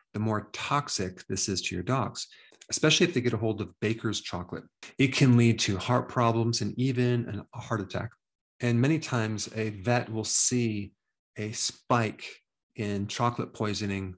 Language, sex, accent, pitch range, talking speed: English, male, American, 105-125 Hz, 170 wpm